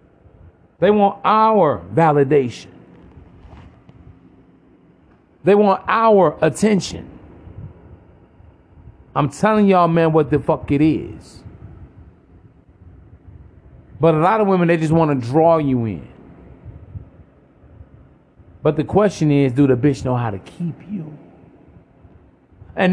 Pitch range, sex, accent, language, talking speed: 105-175 Hz, male, American, English, 110 wpm